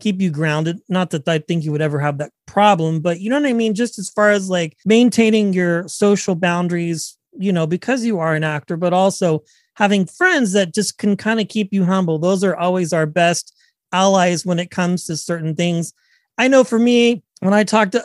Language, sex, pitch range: English, male, 180-240 Hz